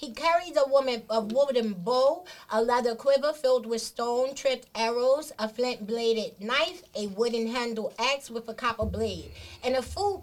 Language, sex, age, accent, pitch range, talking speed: English, female, 30-49, American, 225-280 Hz, 160 wpm